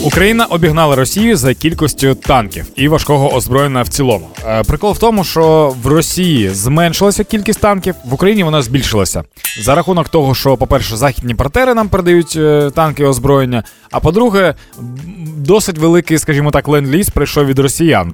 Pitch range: 120-165 Hz